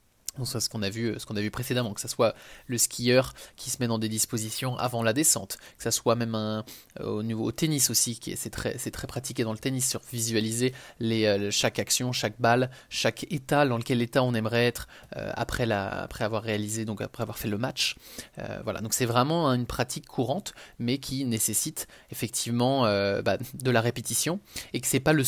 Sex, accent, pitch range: male, French, 115-135 Hz